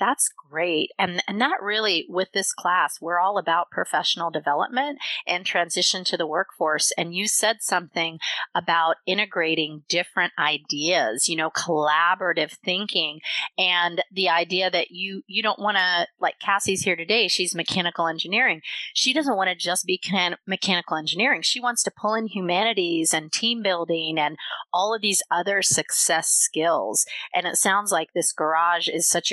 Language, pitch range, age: English, 160-200 Hz, 30-49